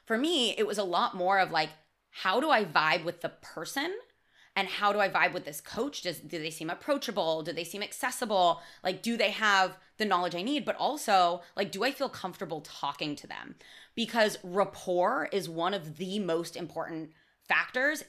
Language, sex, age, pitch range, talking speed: English, female, 20-39, 165-210 Hz, 200 wpm